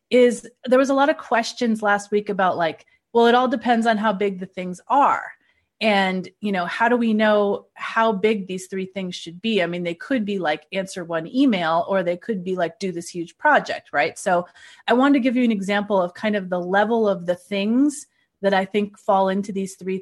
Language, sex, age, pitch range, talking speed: English, female, 30-49, 180-235 Hz, 230 wpm